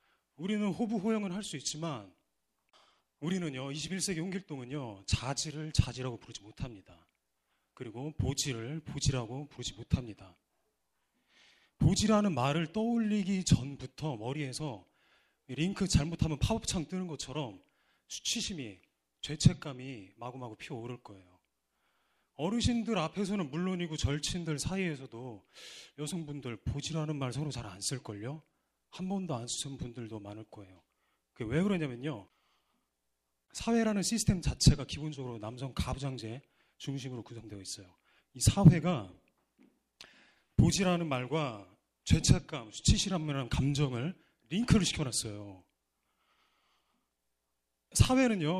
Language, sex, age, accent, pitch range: Korean, male, 30-49, native, 115-165 Hz